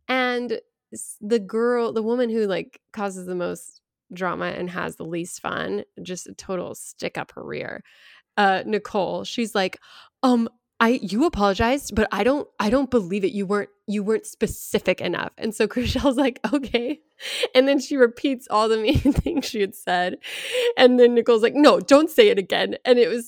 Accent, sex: American, female